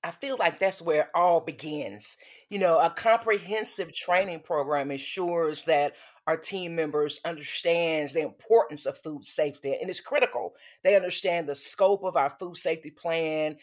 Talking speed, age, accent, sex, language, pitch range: 165 wpm, 40-59, American, female, English, 160-215 Hz